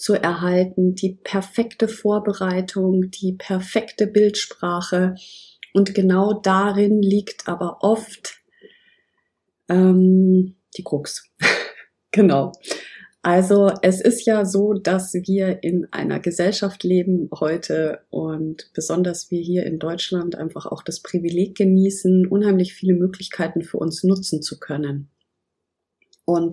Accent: German